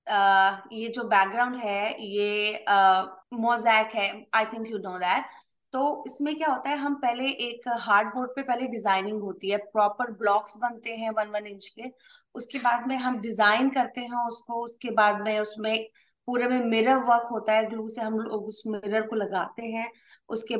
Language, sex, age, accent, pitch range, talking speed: Hindi, female, 20-39, native, 215-275 Hz, 170 wpm